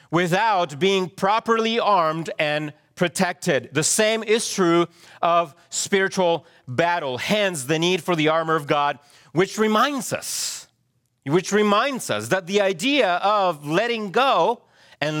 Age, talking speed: 40-59, 135 wpm